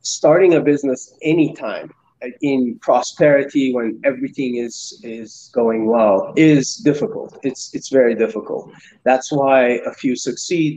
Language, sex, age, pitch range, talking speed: English, male, 30-49, 115-150 Hz, 130 wpm